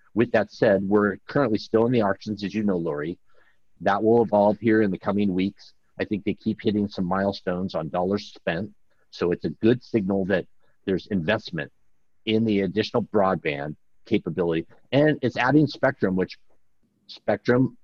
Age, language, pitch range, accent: 50-69, English, 95-115 Hz, American